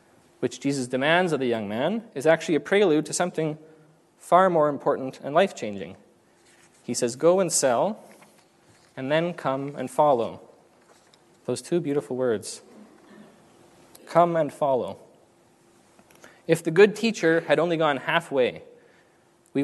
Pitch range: 130-170 Hz